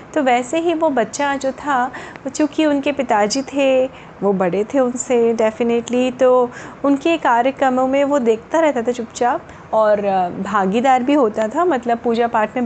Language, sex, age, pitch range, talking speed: Hindi, female, 30-49, 220-285 Hz, 160 wpm